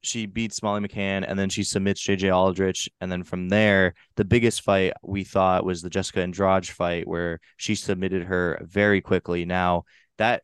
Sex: male